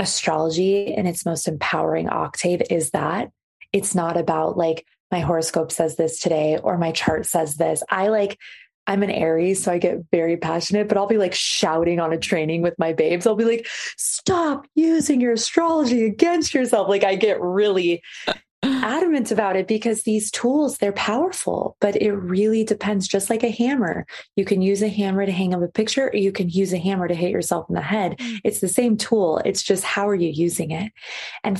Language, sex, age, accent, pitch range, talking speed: English, female, 20-39, American, 175-225 Hz, 200 wpm